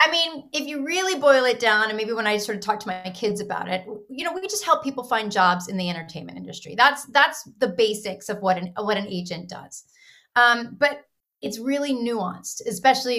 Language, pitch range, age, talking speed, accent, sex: English, 195-235 Hz, 30-49, 225 wpm, American, female